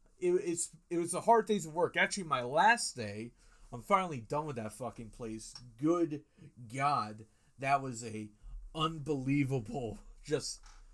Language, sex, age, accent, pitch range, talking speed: English, male, 30-49, American, 115-165 Hz, 145 wpm